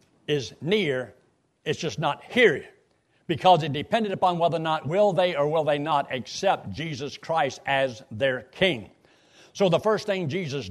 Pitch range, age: 145-190 Hz, 60-79